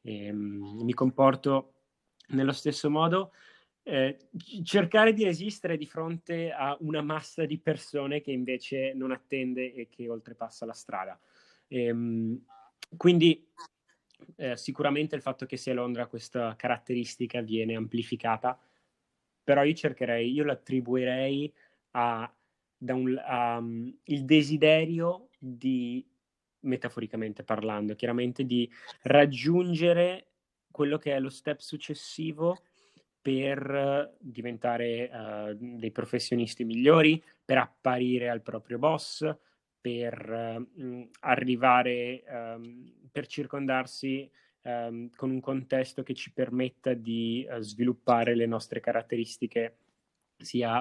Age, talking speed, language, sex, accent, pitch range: 20-39, 105 wpm, Italian, male, native, 120-145 Hz